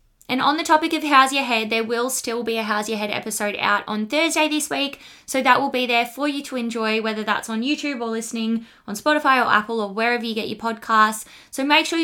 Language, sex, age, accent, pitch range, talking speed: English, female, 20-39, Australian, 225-275 Hz, 250 wpm